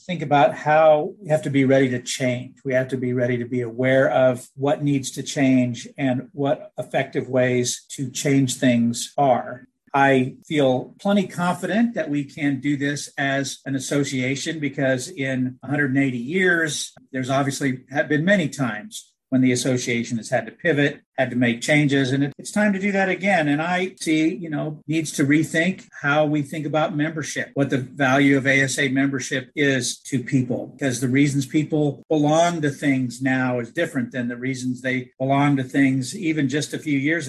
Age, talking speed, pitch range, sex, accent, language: 50-69, 185 wpm, 130-155 Hz, male, American, English